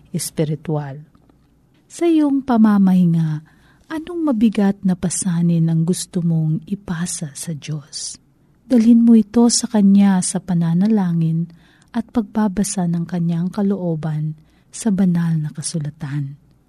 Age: 40-59